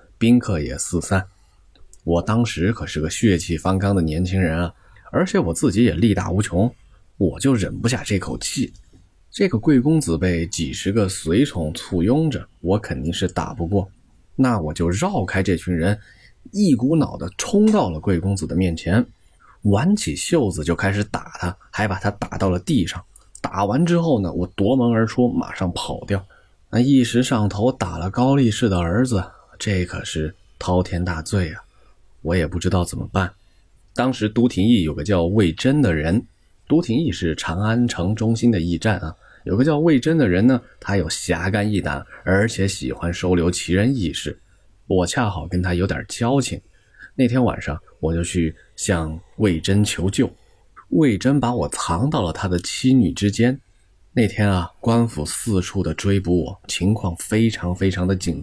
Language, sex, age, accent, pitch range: Chinese, male, 20-39, native, 85-115 Hz